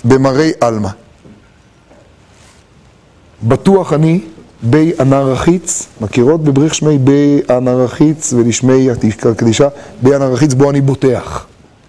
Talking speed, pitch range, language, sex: 105 wpm, 120-150 Hz, Hebrew, male